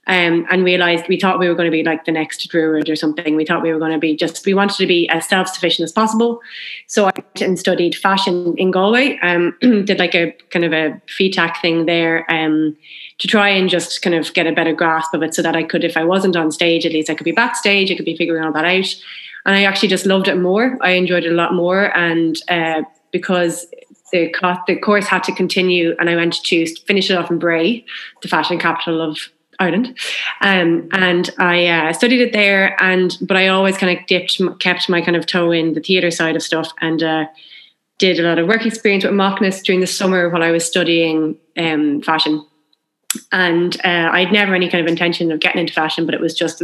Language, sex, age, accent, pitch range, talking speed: English, female, 30-49, Irish, 165-190 Hz, 235 wpm